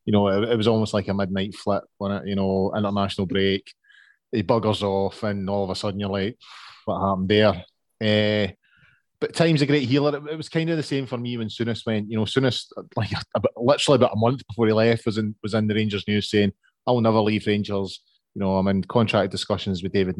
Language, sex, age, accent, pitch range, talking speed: English, male, 20-39, British, 100-115 Hz, 230 wpm